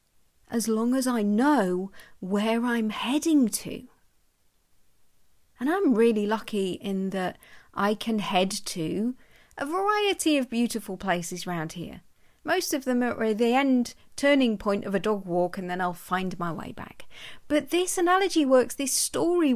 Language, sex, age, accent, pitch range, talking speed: English, female, 40-59, British, 205-300 Hz, 155 wpm